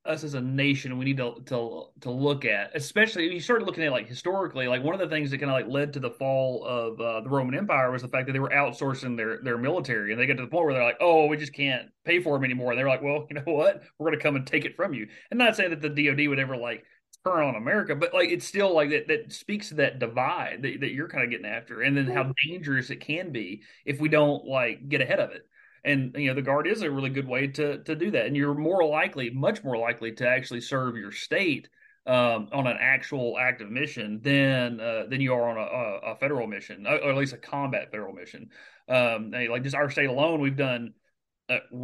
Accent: American